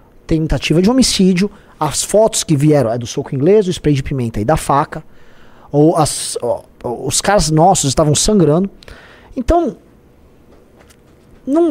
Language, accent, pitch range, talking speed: Portuguese, Brazilian, 140-200 Hz, 145 wpm